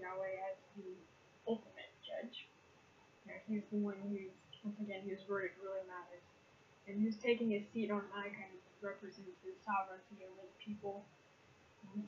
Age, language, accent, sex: 10-29, English, American, female